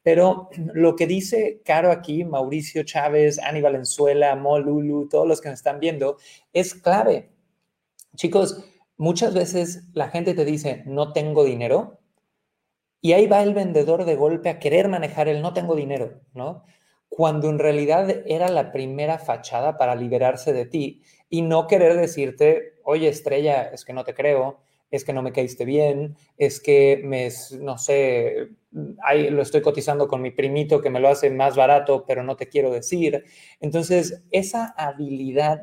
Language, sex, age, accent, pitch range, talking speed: Spanish, male, 30-49, Mexican, 140-175 Hz, 165 wpm